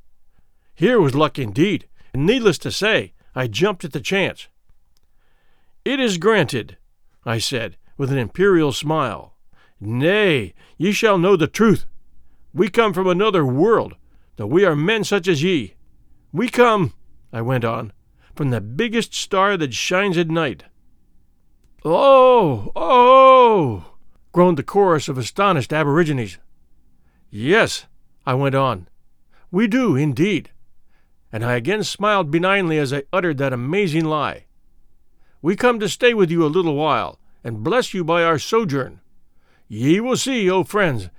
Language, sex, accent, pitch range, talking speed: English, male, American, 115-195 Hz, 145 wpm